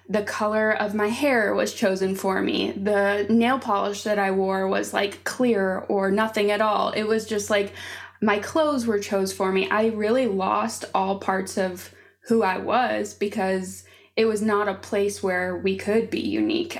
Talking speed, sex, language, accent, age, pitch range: 185 wpm, female, English, American, 20-39, 195-215 Hz